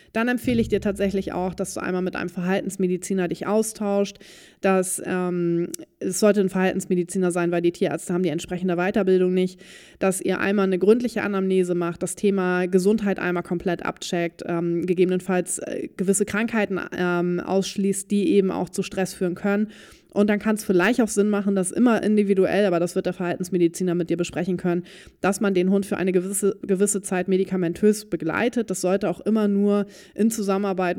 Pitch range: 180-200 Hz